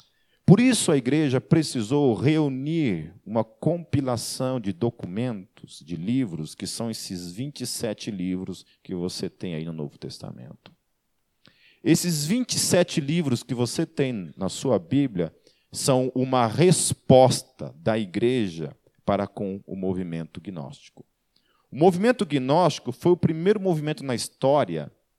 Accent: Brazilian